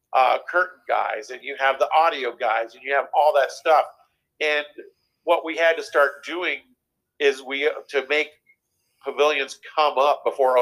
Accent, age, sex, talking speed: American, 50-69, male, 170 wpm